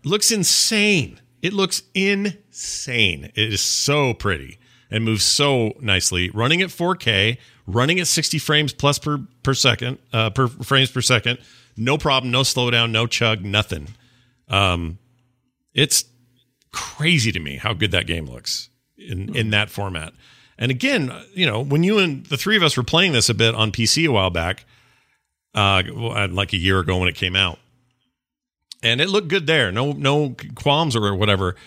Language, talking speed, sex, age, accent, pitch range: English, 170 wpm, male, 40-59, American, 110-160 Hz